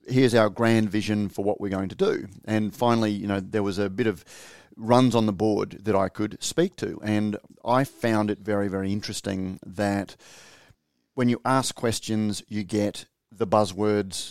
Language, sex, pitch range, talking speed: English, male, 100-120 Hz, 185 wpm